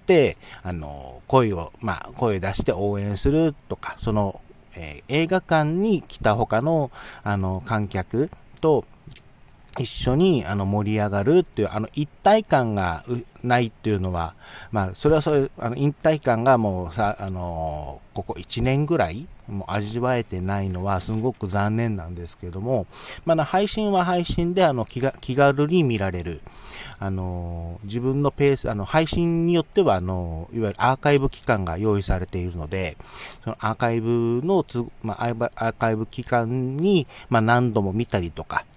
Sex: male